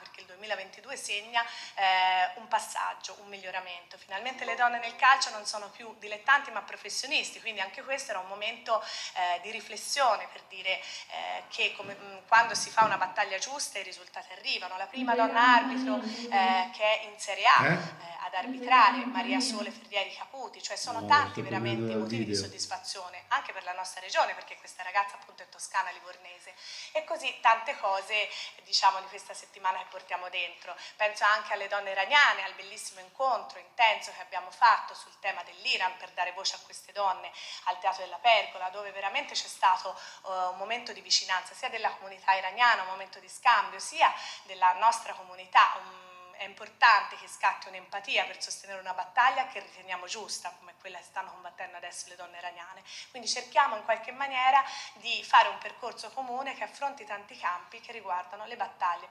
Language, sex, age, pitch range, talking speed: Italian, female, 30-49, 185-230 Hz, 175 wpm